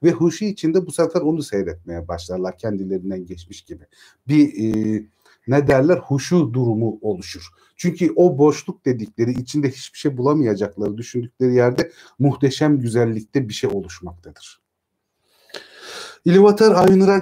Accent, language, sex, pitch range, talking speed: native, Turkish, male, 115-165 Hz, 120 wpm